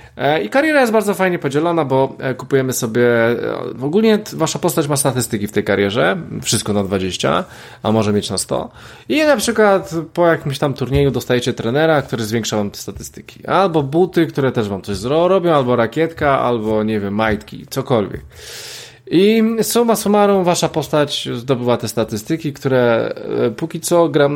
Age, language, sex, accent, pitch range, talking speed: 20-39, Polish, male, native, 115-160 Hz, 165 wpm